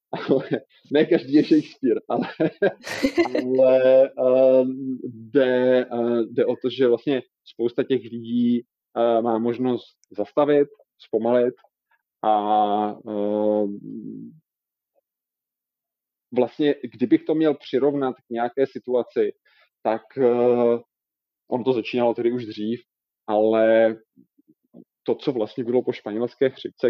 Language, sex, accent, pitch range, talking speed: Czech, male, native, 110-130 Hz, 95 wpm